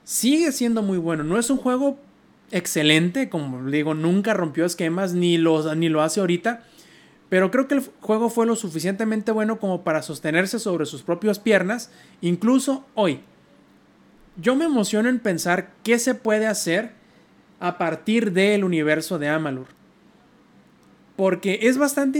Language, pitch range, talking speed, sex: Spanish, 165-220 Hz, 150 wpm, male